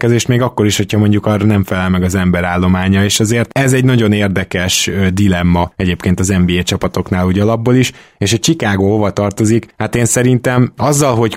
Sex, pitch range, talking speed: male, 95-115 Hz, 190 wpm